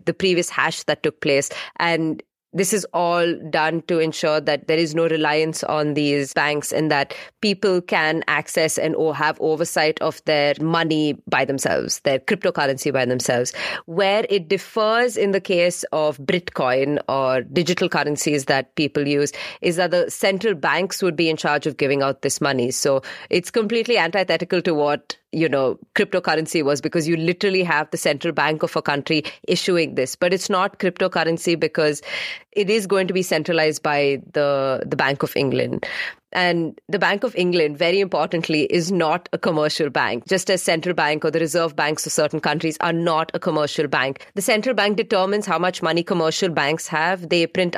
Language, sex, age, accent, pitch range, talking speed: English, female, 30-49, Indian, 150-180 Hz, 185 wpm